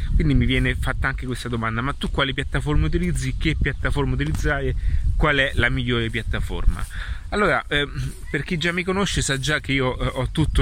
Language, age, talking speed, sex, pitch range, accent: Italian, 30-49, 190 wpm, male, 105-135 Hz, native